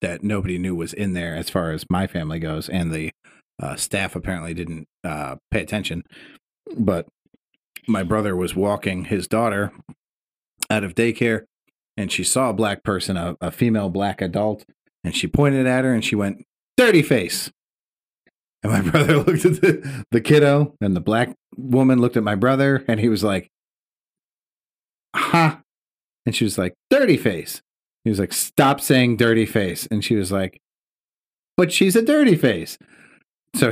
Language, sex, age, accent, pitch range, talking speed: English, male, 40-59, American, 95-130 Hz, 170 wpm